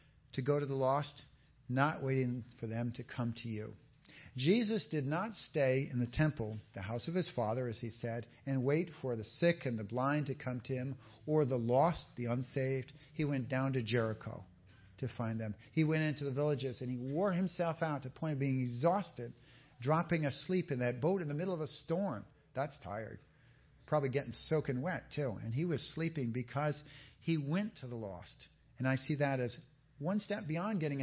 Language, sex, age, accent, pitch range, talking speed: English, male, 50-69, American, 120-150 Hz, 205 wpm